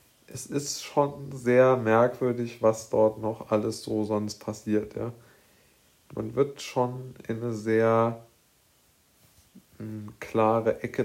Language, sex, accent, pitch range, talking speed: German, male, German, 105-120 Hz, 115 wpm